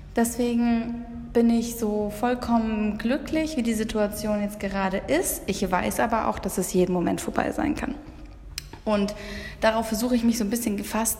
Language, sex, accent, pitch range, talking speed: German, female, German, 190-225 Hz, 170 wpm